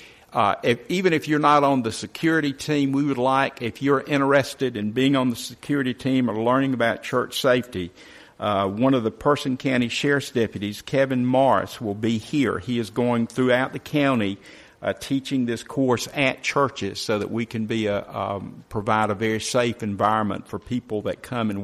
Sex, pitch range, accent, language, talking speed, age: male, 105-130 Hz, American, English, 190 wpm, 50-69